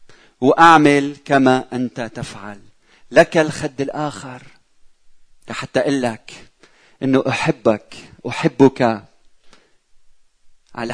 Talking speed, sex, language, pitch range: 75 wpm, male, Arabic, 115-145 Hz